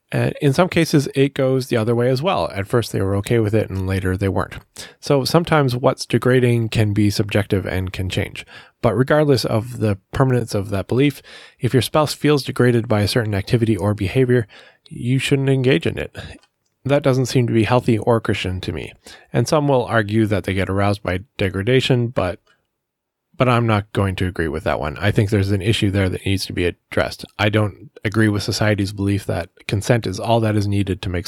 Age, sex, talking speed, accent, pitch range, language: 20-39, male, 215 wpm, American, 100-130 Hz, English